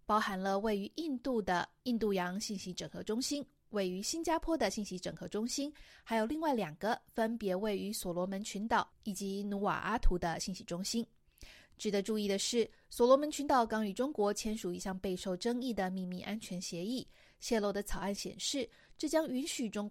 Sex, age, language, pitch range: female, 20-39, Chinese, 190-235 Hz